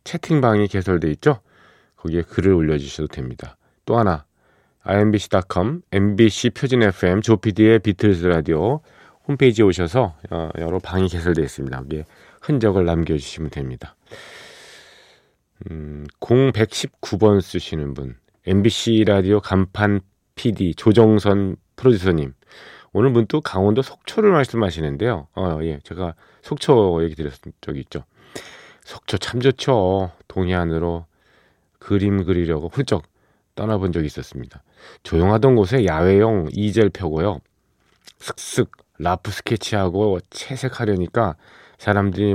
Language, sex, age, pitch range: Korean, male, 40-59, 85-110 Hz